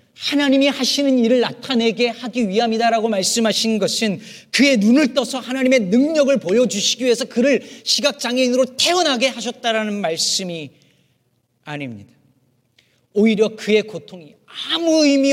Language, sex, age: Korean, male, 40-59